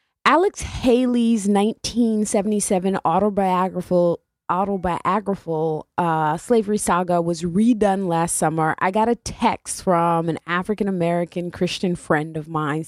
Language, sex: English, female